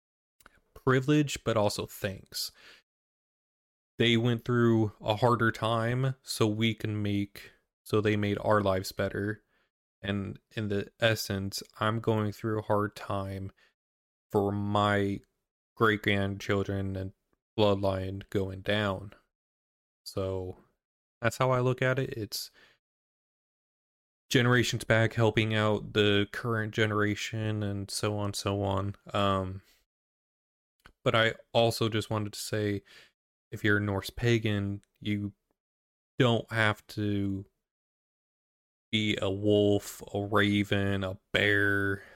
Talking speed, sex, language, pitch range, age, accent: 115 wpm, male, English, 100-110 Hz, 20-39, American